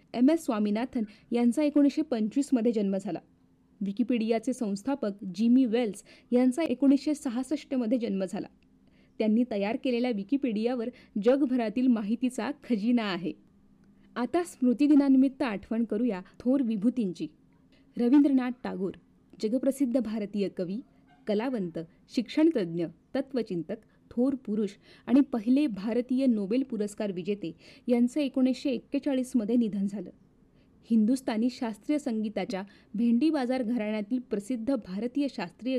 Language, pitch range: Marathi, 215-265 Hz